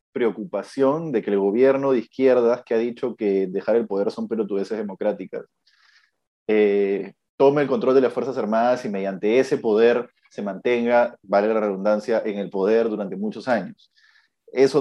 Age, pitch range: 30-49, 110-140 Hz